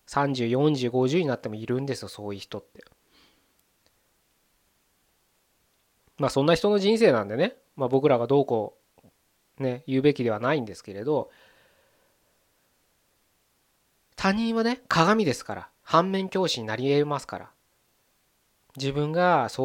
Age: 20-39